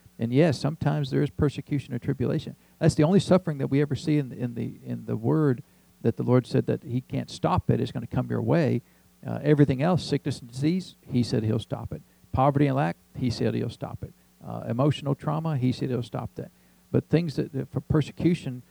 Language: English